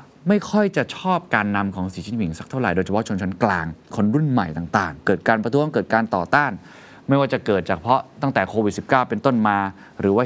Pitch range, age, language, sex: 95-135 Hz, 20-39, Thai, male